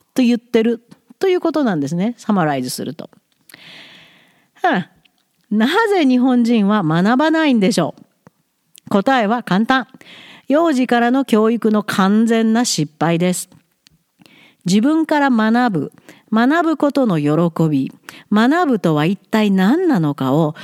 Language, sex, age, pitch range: Japanese, female, 50-69, 205-315 Hz